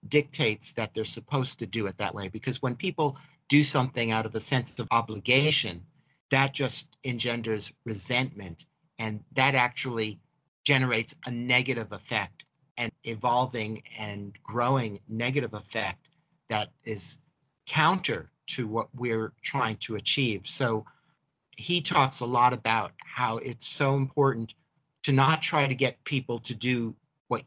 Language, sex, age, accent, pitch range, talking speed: English, male, 50-69, American, 110-140 Hz, 140 wpm